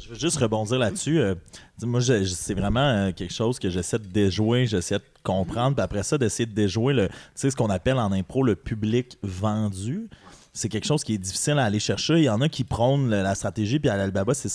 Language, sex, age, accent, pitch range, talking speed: French, male, 30-49, Canadian, 110-145 Hz, 230 wpm